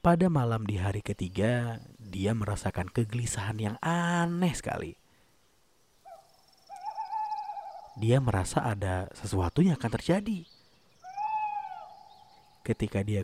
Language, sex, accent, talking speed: Indonesian, male, native, 90 wpm